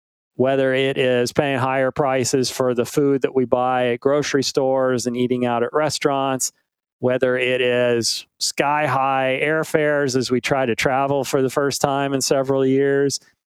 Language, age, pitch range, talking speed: English, 40-59, 125-145 Hz, 170 wpm